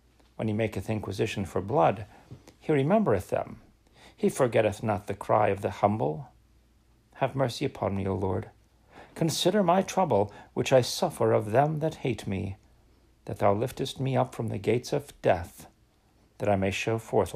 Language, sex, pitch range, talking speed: English, male, 105-140 Hz, 170 wpm